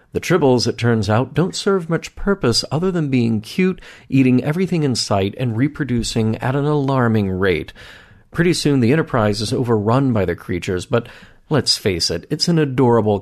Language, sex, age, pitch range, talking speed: English, male, 40-59, 100-135 Hz, 175 wpm